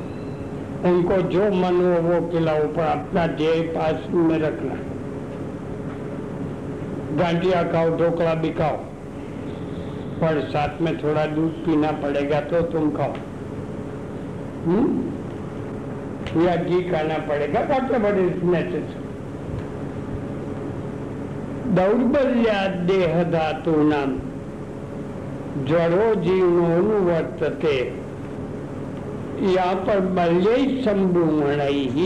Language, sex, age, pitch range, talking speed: Hindi, male, 60-79, 150-185 Hz, 75 wpm